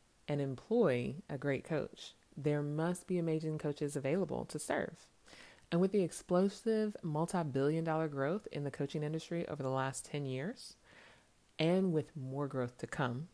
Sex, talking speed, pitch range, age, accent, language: female, 155 wpm, 130-165 Hz, 30-49, American, English